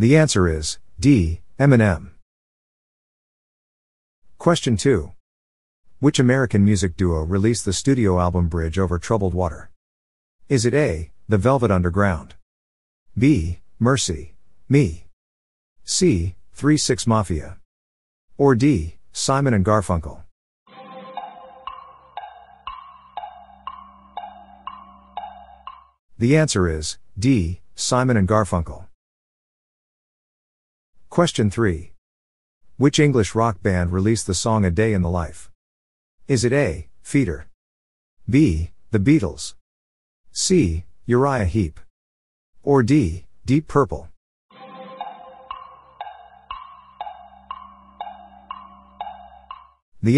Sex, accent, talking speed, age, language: male, American, 85 wpm, 50-69, English